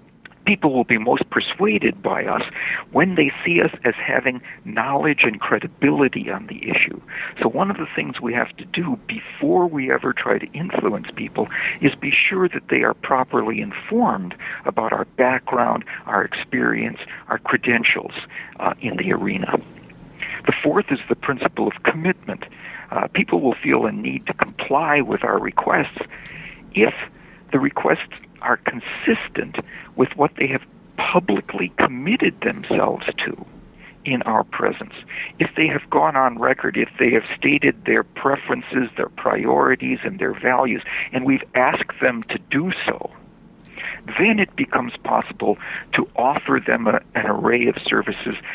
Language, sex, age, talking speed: English, male, 60-79, 150 wpm